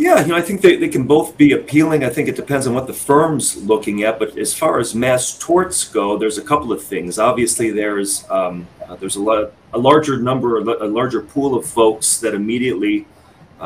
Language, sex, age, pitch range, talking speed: English, male, 40-59, 95-125 Hz, 225 wpm